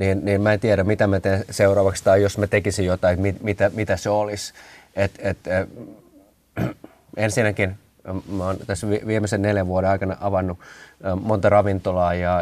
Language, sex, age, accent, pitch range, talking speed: Finnish, male, 20-39, native, 95-105 Hz, 170 wpm